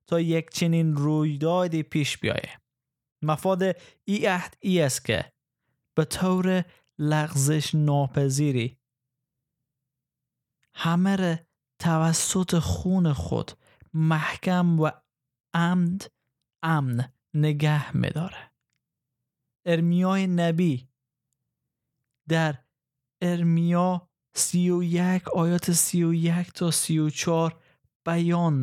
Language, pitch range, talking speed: Persian, 135-165 Hz, 75 wpm